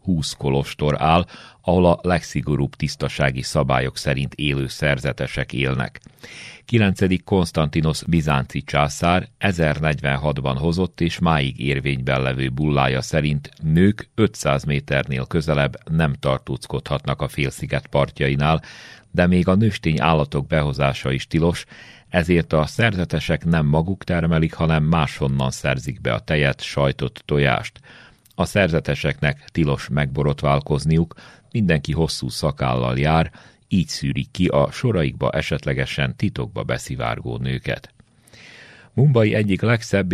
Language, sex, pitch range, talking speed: Hungarian, male, 70-90 Hz, 115 wpm